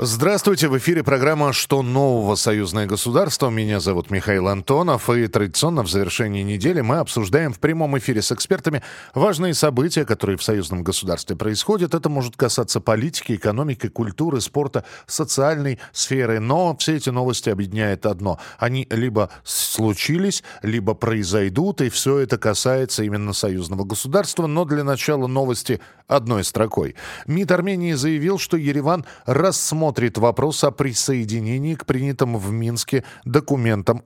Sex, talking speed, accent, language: male, 135 wpm, native, Russian